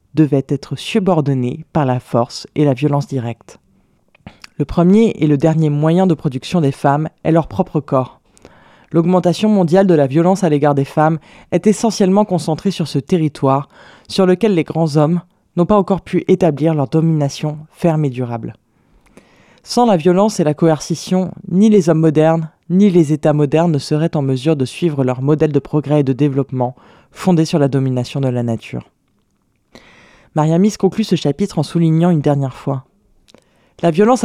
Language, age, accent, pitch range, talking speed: French, 20-39, French, 145-185 Hz, 175 wpm